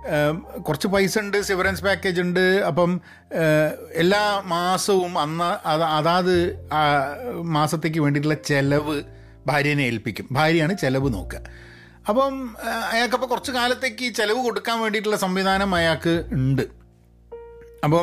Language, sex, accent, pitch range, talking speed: Malayalam, male, native, 125-190 Hz, 105 wpm